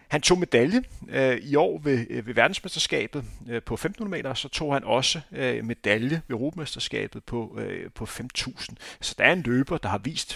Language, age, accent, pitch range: Danish, 30-49, native, 115-145 Hz